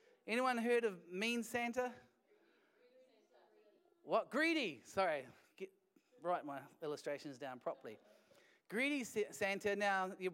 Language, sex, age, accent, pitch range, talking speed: English, male, 30-49, Australian, 185-250 Hz, 100 wpm